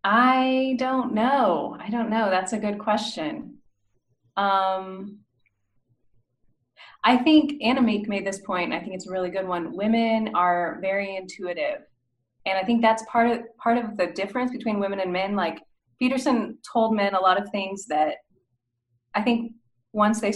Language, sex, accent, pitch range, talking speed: English, female, American, 175-220 Hz, 170 wpm